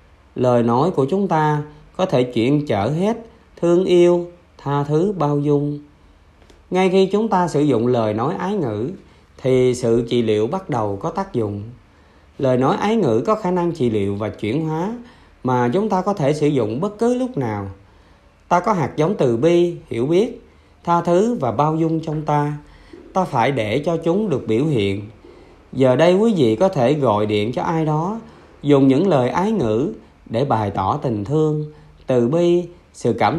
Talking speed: 190 wpm